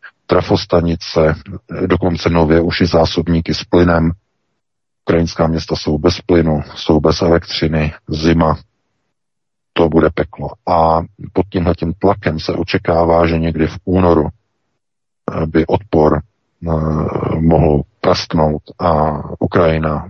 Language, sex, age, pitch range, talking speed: Czech, male, 50-69, 80-90 Hz, 105 wpm